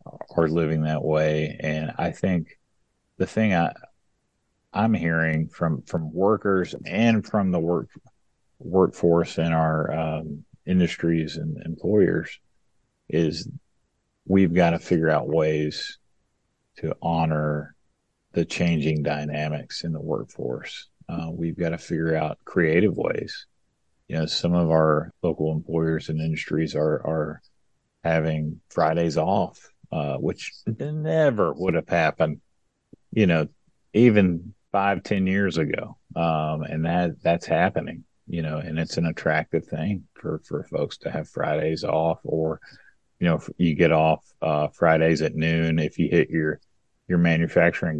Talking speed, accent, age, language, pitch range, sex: 140 wpm, American, 40-59, English, 80-90 Hz, male